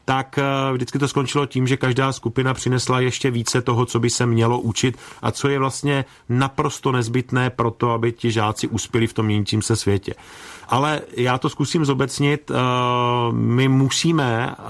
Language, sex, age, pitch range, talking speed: Czech, male, 40-59, 115-130 Hz, 165 wpm